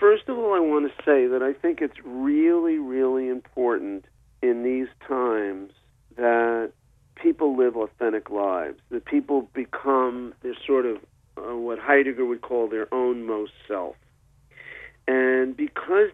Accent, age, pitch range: American, 50-69, 120-140 Hz